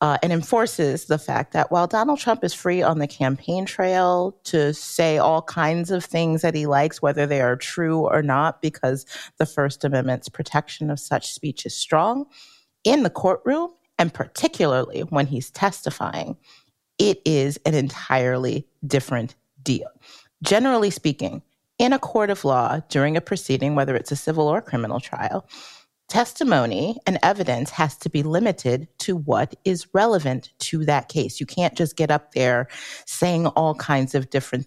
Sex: female